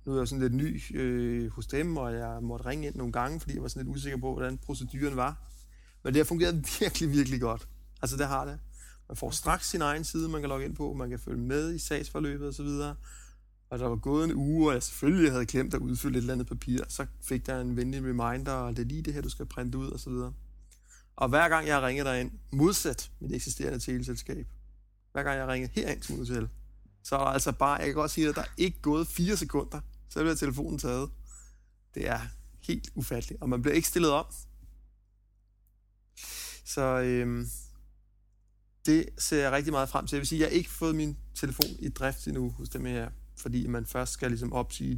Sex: male